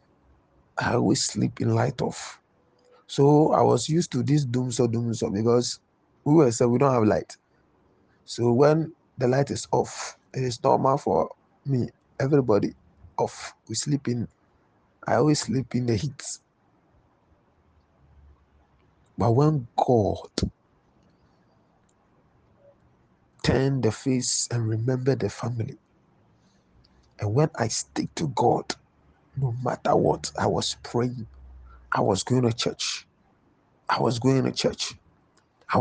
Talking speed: 130 wpm